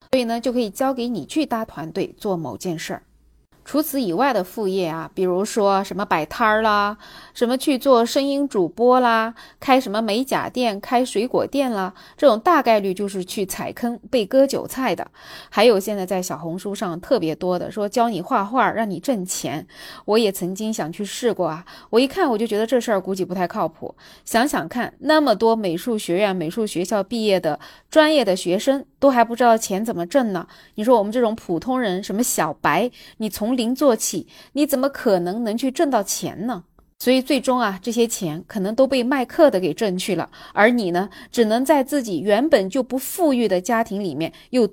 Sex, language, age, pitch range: female, Chinese, 20-39, 190-260 Hz